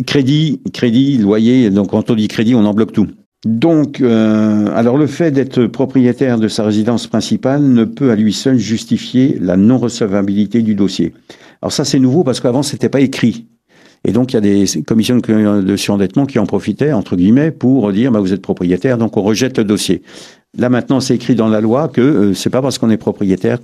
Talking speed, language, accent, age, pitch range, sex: 215 wpm, French, French, 60-79, 100-130 Hz, male